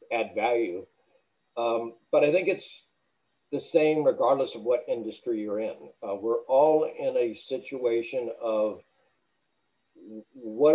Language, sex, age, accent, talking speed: English, male, 60-79, American, 130 wpm